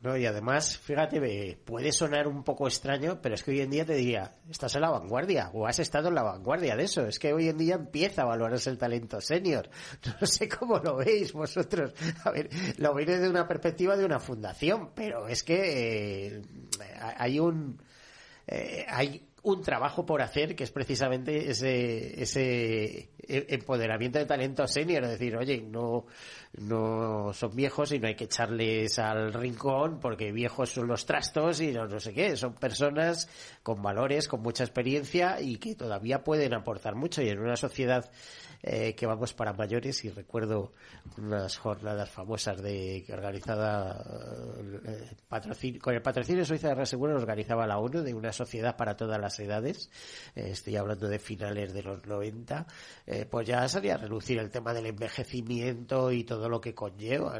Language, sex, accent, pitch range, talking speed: Spanish, male, Spanish, 110-145 Hz, 180 wpm